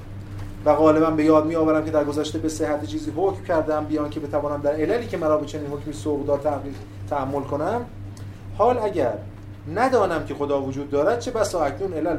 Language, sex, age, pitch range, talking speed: Persian, male, 30-49, 100-160 Hz, 195 wpm